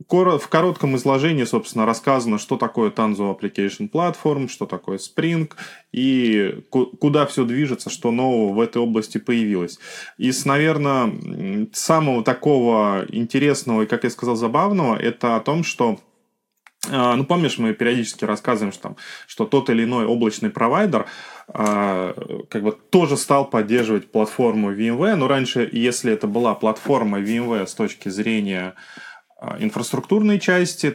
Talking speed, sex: 130 wpm, male